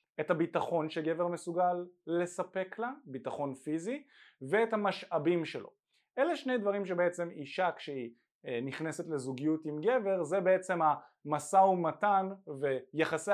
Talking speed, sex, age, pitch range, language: 115 wpm, male, 20-39, 130-180 Hz, Hebrew